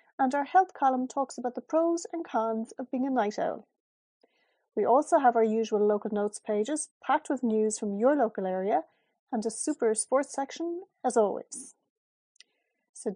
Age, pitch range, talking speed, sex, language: 40-59, 220-290 Hz, 175 wpm, female, English